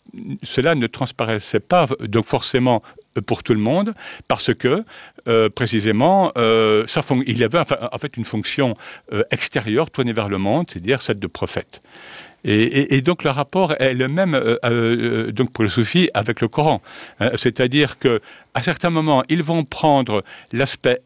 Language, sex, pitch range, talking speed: French, male, 115-170 Hz, 155 wpm